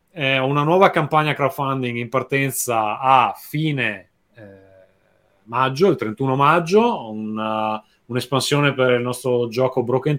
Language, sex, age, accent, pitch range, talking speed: Italian, male, 30-49, native, 110-145 Hz, 120 wpm